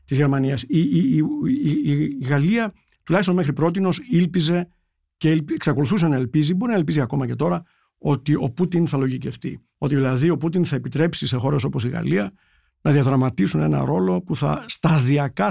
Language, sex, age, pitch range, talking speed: Greek, male, 50-69, 135-165 Hz, 170 wpm